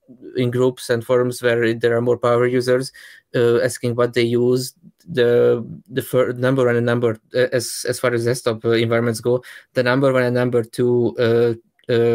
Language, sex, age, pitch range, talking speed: English, male, 20-39, 115-130 Hz, 185 wpm